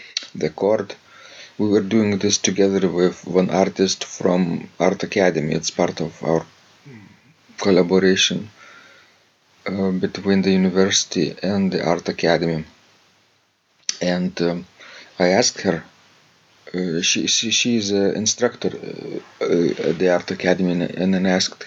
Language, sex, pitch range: English, male, 90-105 Hz